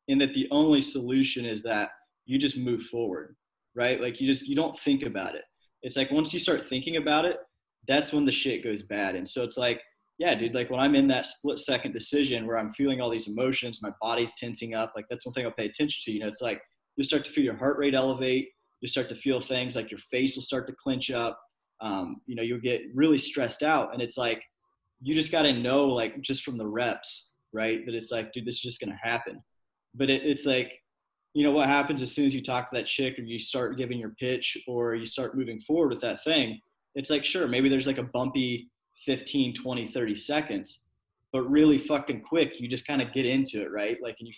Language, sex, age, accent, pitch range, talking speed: English, male, 20-39, American, 115-140 Hz, 240 wpm